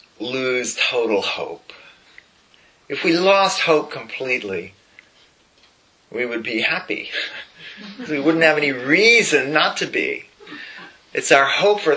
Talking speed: 120 wpm